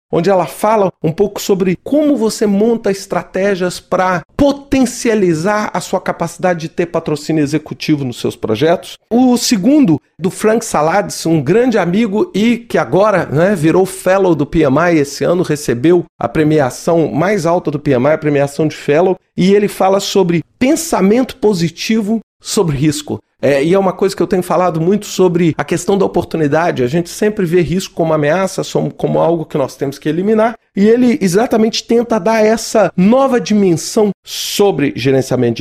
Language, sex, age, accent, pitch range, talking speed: Portuguese, male, 40-59, Brazilian, 165-220 Hz, 165 wpm